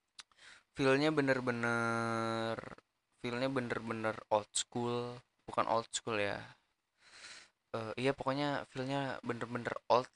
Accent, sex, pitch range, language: native, male, 105-120 Hz, Indonesian